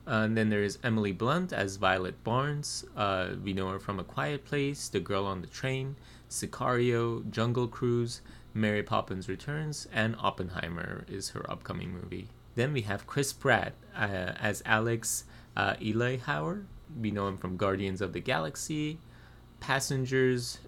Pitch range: 100-125 Hz